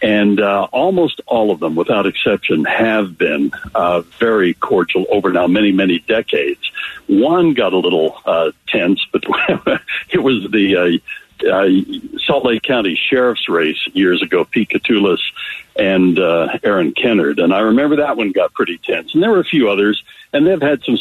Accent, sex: American, male